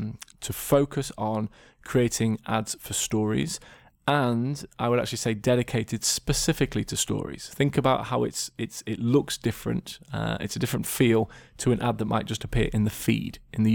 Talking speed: 180 wpm